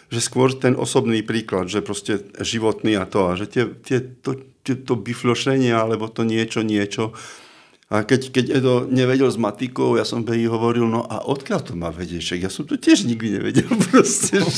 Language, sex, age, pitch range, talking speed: Slovak, male, 50-69, 110-135 Hz, 180 wpm